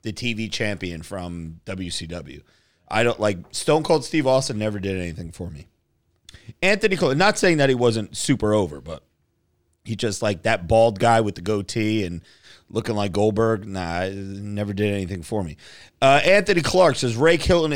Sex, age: male, 30-49